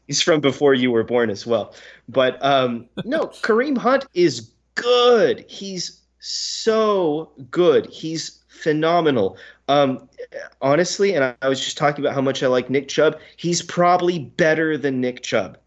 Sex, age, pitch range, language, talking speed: male, 30-49, 110-145 Hz, English, 155 wpm